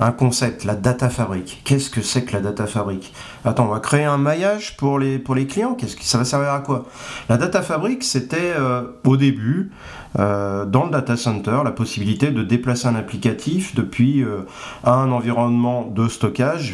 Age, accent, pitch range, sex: 40-59, French, 120-150 Hz, male